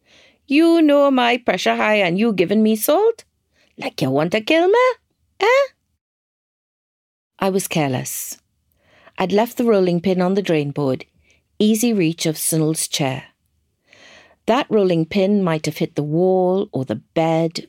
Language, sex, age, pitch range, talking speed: English, female, 50-69, 155-235 Hz, 155 wpm